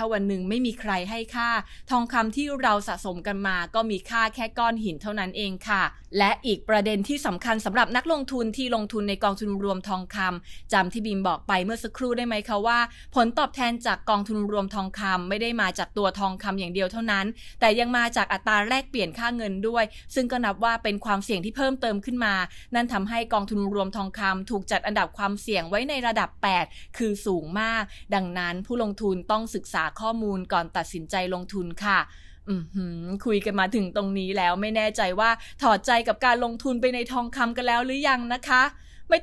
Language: English